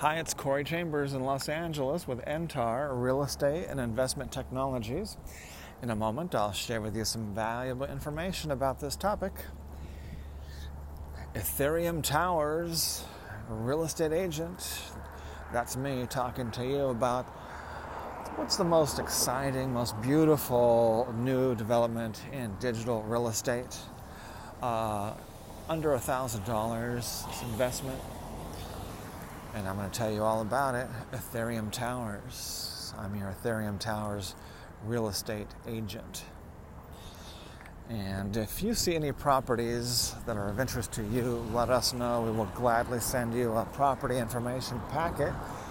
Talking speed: 125 wpm